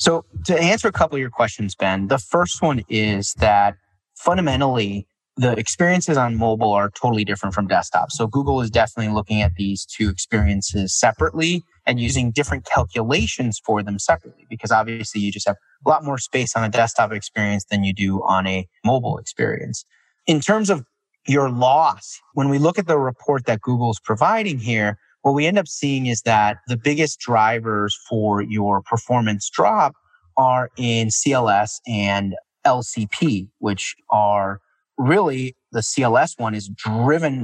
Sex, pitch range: male, 105-135 Hz